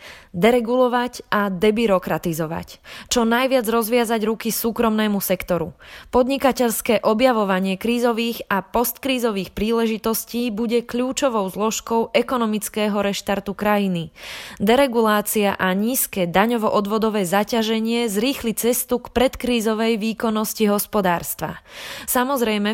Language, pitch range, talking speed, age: Slovak, 205-235 Hz, 85 wpm, 20-39